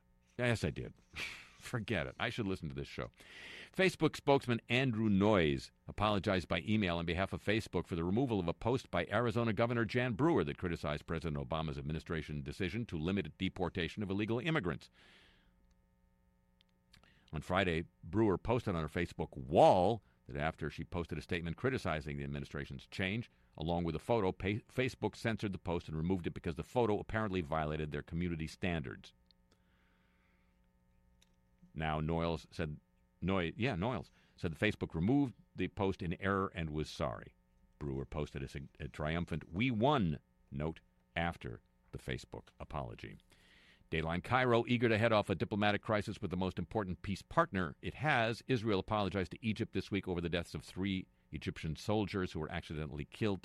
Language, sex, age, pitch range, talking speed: English, male, 50-69, 70-105 Hz, 160 wpm